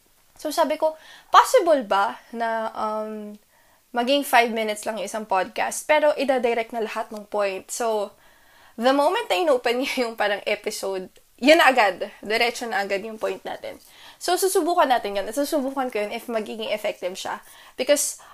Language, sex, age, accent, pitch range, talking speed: Filipino, female, 20-39, native, 215-270 Hz, 165 wpm